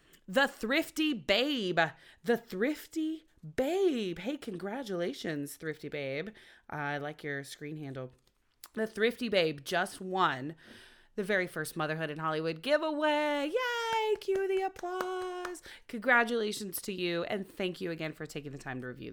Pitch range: 150-240 Hz